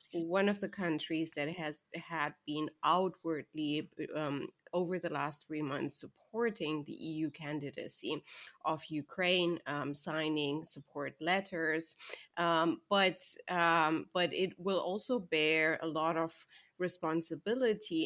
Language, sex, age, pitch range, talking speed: English, female, 30-49, 155-185 Hz, 125 wpm